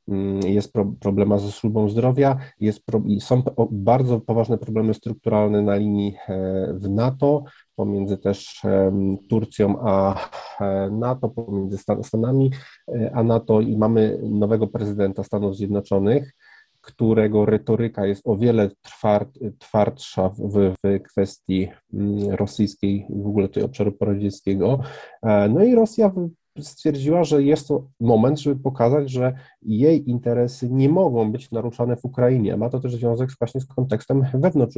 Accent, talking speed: native, 145 wpm